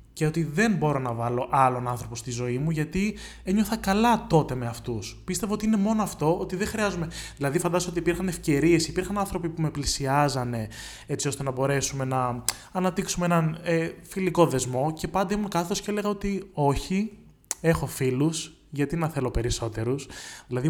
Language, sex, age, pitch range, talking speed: Greek, male, 20-39, 125-170 Hz, 175 wpm